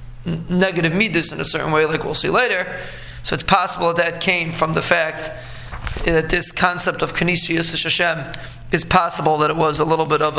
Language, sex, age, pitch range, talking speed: English, male, 20-39, 155-185 Hz, 210 wpm